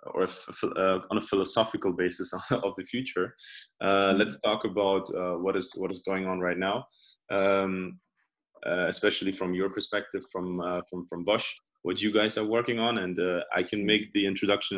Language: English